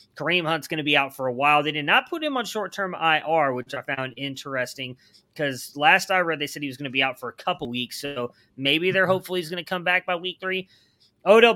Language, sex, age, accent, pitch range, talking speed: English, male, 30-49, American, 140-185 Hz, 260 wpm